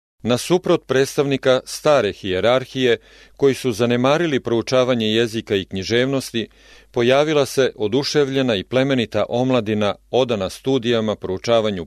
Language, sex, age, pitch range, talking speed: English, male, 40-59, 110-135 Hz, 105 wpm